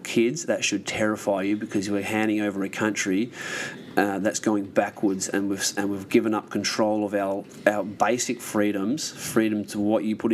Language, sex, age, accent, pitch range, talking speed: English, male, 30-49, Australian, 100-110 Hz, 185 wpm